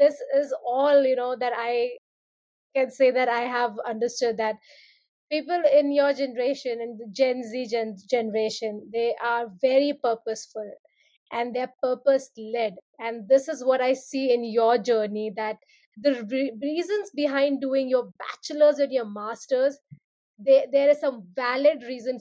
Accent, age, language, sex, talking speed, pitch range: Indian, 30-49, English, female, 145 wpm, 235-280 Hz